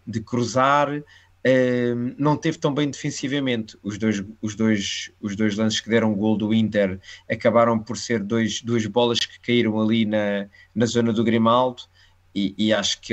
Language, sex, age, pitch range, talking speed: Portuguese, male, 20-39, 105-120 Hz, 180 wpm